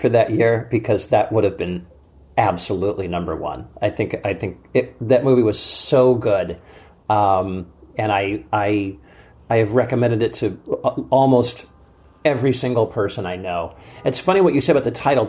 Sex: male